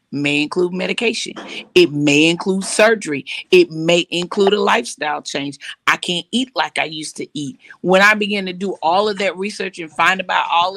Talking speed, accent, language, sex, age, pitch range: 190 wpm, American, English, female, 40-59, 170-205 Hz